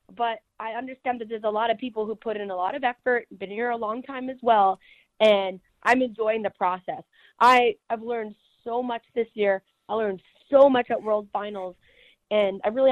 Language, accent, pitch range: English, American, 200-245 Hz